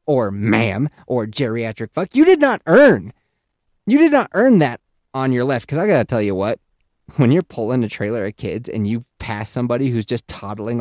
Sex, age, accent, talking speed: male, 30-49, American, 205 wpm